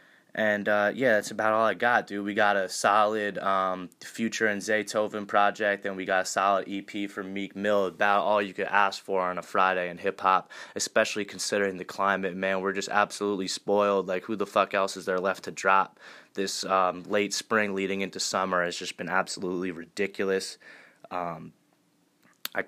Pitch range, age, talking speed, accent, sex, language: 95-100 Hz, 20-39, 190 wpm, American, male, English